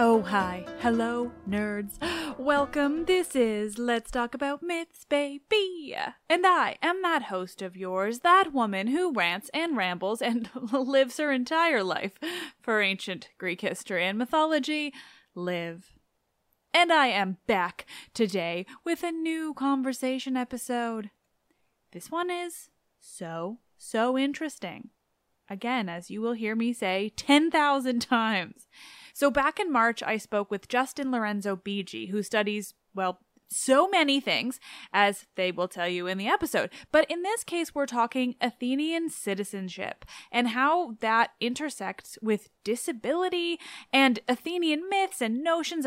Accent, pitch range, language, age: American, 205-300 Hz, English, 10-29